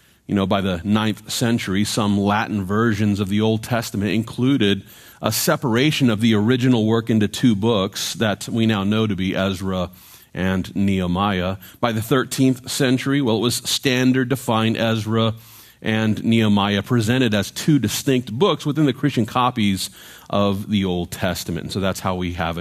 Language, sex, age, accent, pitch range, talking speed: English, male, 40-59, American, 105-130 Hz, 170 wpm